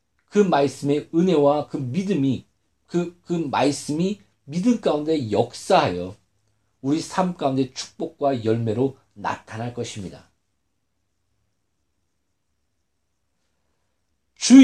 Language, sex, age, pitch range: Korean, male, 50-69, 110-180 Hz